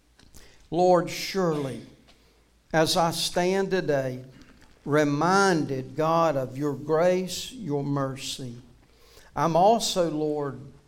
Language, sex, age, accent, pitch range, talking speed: English, male, 60-79, American, 145-180 Hz, 90 wpm